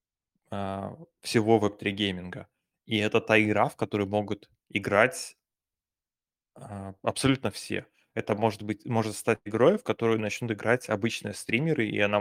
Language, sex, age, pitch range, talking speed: Russian, male, 20-39, 100-110 Hz, 140 wpm